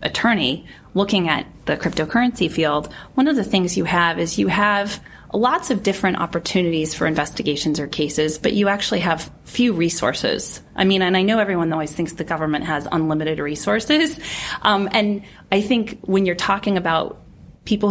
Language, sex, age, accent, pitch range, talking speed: English, female, 30-49, American, 160-200 Hz, 170 wpm